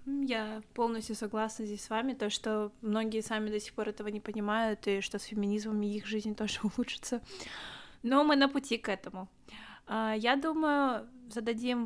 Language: Russian